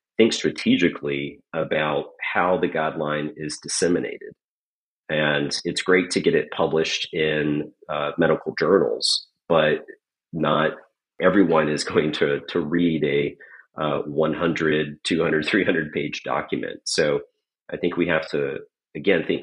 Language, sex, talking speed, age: English, male, 130 wpm, 40-59